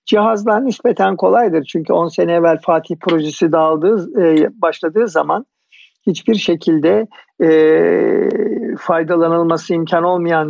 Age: 50-69